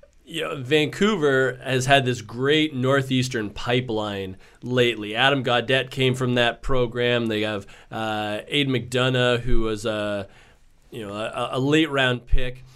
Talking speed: 145 wpm